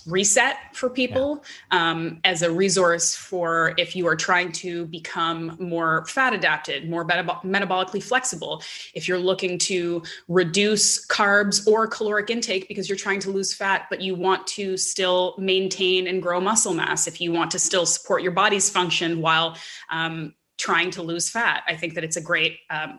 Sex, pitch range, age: female, 170-195 Hz, 20-39